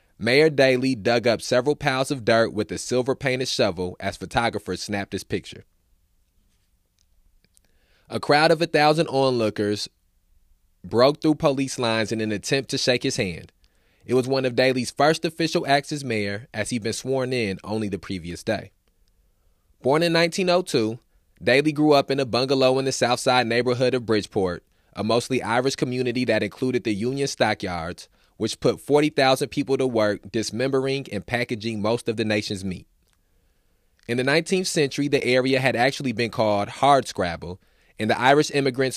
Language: English